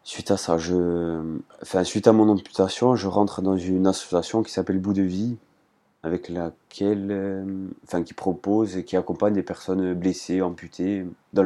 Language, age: French, 30-49